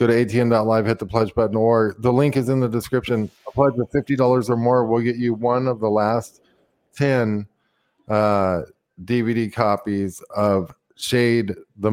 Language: English